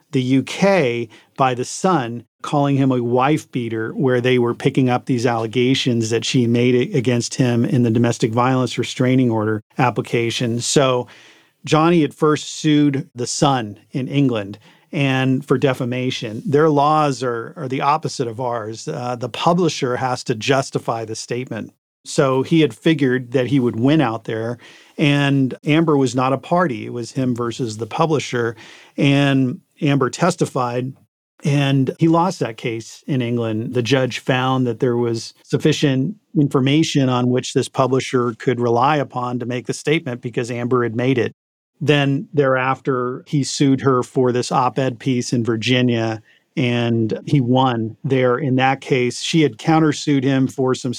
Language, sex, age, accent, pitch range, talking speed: English, male, 40-59, American, 120-140 Hz, 160 wpm